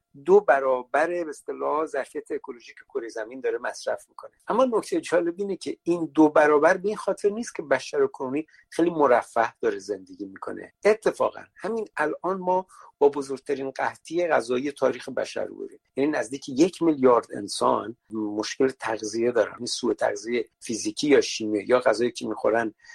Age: 50-69